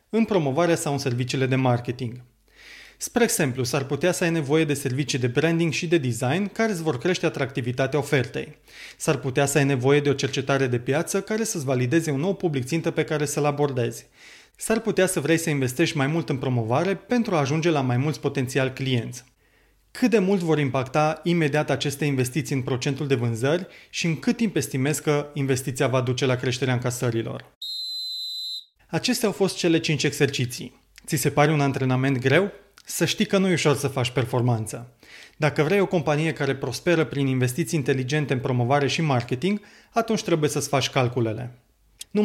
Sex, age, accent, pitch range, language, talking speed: male, 30-49, native, 130-170 Hz, Romanian, 185 wpm